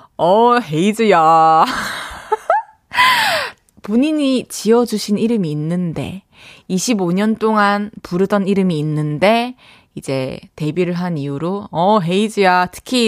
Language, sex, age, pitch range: Korean, female, 20-39, 175-245 Hz